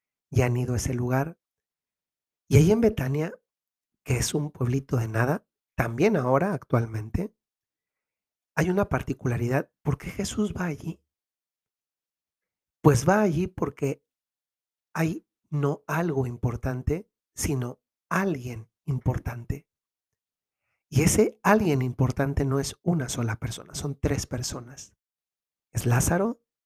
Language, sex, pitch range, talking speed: Spanish, male, 125-155 Hz, 115 wpm